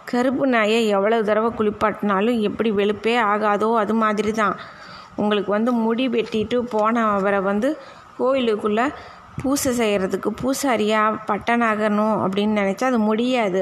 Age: 20-39